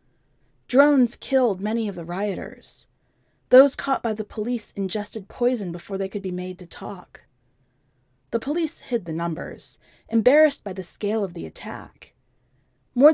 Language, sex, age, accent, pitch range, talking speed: English, female, 30-49, American, 160-245 Hz, 150 wpm